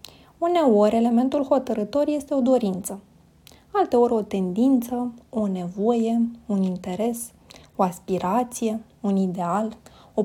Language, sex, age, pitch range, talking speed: Romanian, female, 20-39, 210-275 Hz, 105 wpm